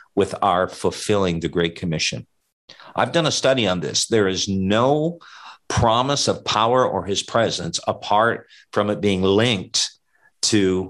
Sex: male